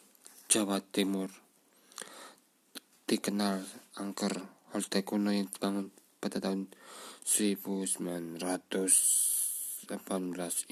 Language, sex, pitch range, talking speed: Indonesian, male, 95-100 Hz, 60 wpm